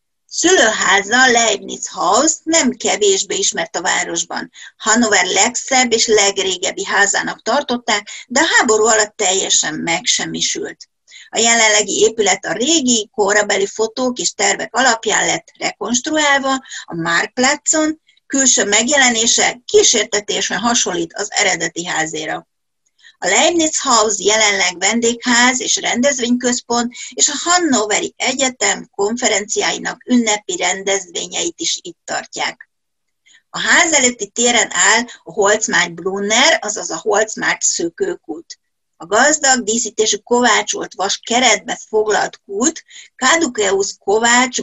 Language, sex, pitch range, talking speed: Hungarian, female, 205-285 Hz, 110 wpm